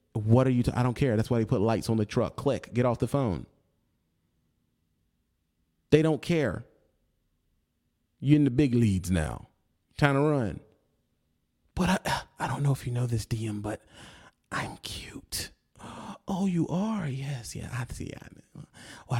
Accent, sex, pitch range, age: American, male, 110-170 Hz, 30-49